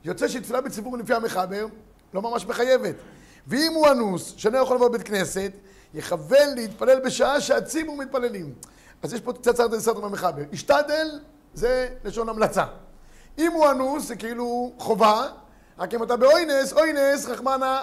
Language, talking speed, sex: Hebrew, 150 wpm, male